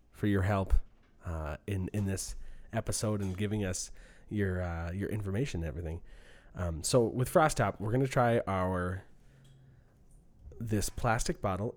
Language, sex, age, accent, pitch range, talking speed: English, male, 30-49, American, 90-120 Hz, 150 wpm